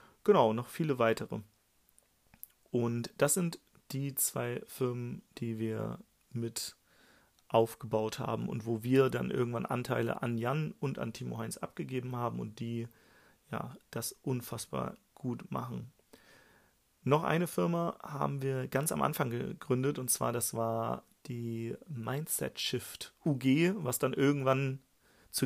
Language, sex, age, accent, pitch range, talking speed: German, male, 40-59, German, 115-135 Hz, 130 wpm